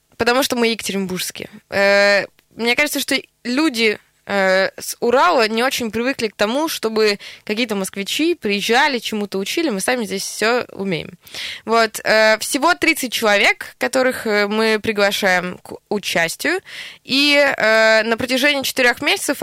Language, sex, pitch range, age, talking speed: Russian, female, 195-245 Hz, 20-39, 120 wpm